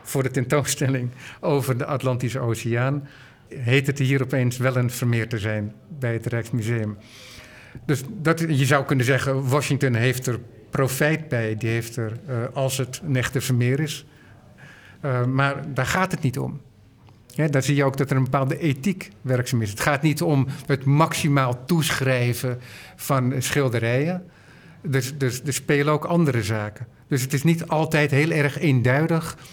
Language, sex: Dutch, male